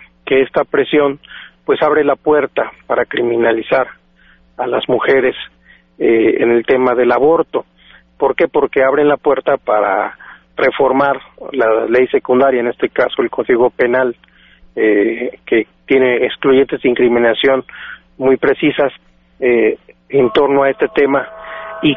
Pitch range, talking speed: 120-150 Hz, 135 wpm